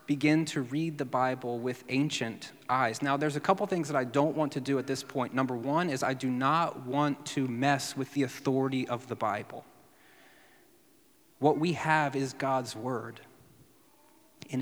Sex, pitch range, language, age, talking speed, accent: male, 125-150 Hz, English, 30-49, 180 wpm, American